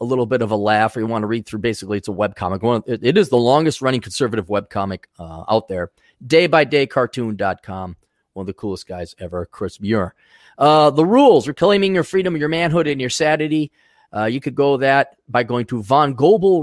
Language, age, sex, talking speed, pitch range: English, 30-49, male, 215 wpm, 100-150 Hz